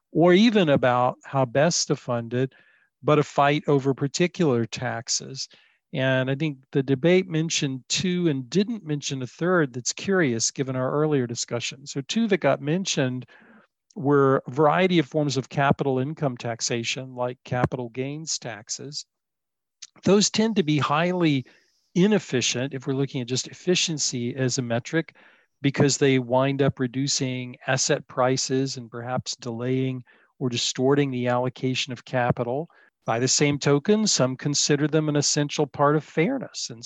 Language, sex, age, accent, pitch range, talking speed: English, male, 50-69, American, 125-150 Hz, 155 wpm